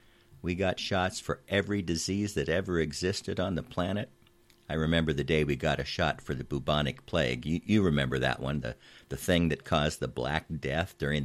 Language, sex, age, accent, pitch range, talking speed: English, male, 50-69, American, 70-95 Hz, 205 wpm